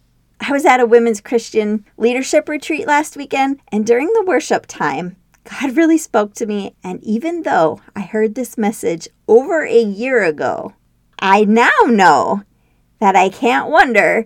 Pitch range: 185-255 Hz